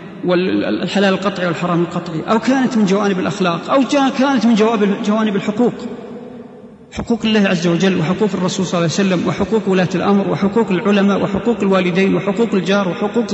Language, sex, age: Arabic, male, 40-59